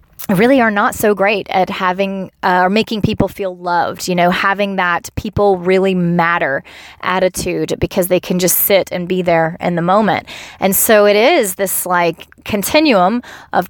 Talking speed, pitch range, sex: 175 wpm, 180-210 Hz, female